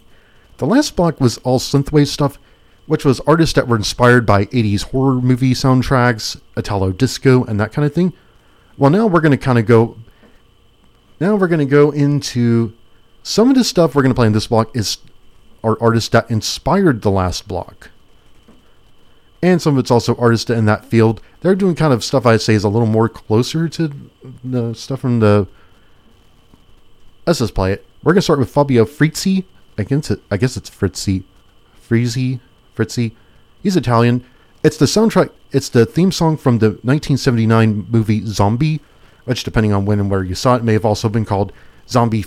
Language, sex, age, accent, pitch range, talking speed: English, male, 40-59, American, 110-140 Hz, 185 wpm